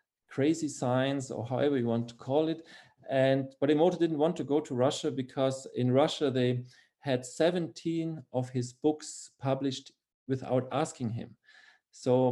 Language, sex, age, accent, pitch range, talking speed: English, male, 40-59, German, 115-140 Hz, 155 wpm